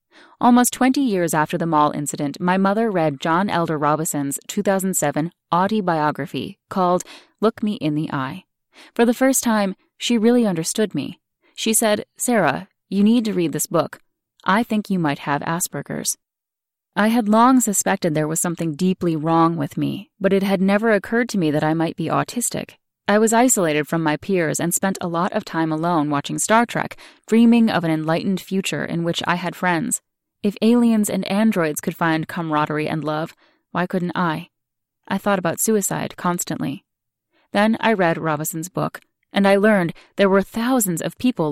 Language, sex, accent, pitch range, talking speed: English, female, American, 160-215 Hz, 180 wpm